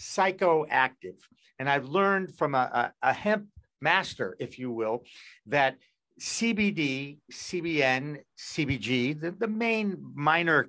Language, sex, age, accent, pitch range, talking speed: English, male, 50-69, American, 140-190 Hz, 110 wpm